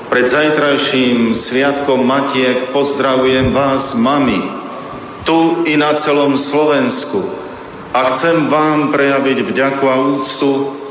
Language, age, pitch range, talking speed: Slovak, 50-69, 125-145 Hz, 105 wpm